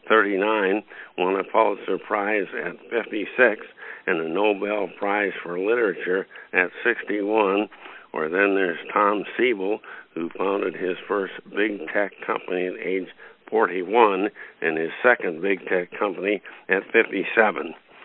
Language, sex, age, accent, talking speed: English, male, 60-79, American, 125 wpm